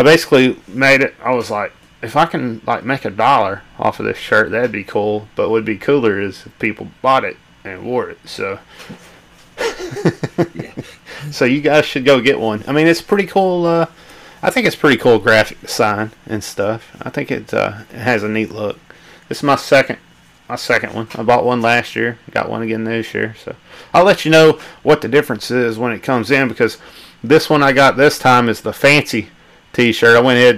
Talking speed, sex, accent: 215 wpm, male, American